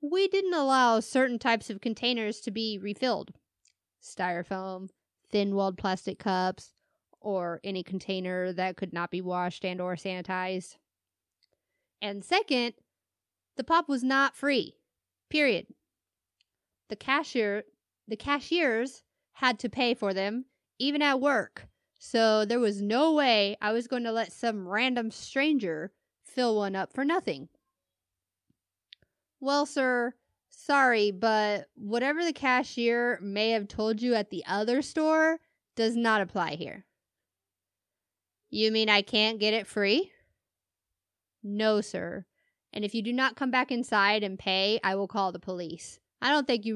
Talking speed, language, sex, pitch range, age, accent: 140 wpm, English, female, 195-260 Hz, 30-49, American